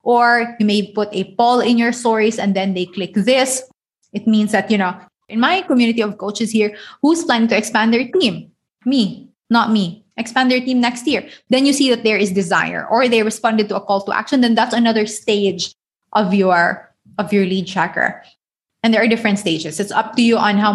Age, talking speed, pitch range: 20-39, 215 wpm, 190-235 Hz